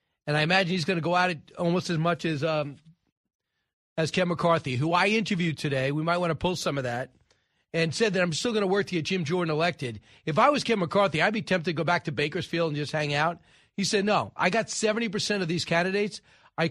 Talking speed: 250 wpm